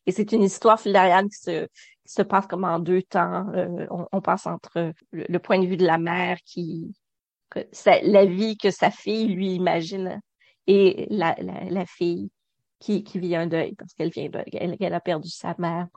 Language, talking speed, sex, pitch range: French, 205 wpm, female, 175-200 Hz